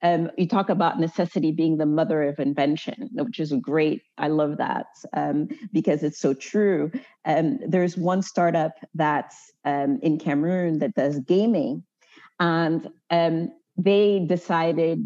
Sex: female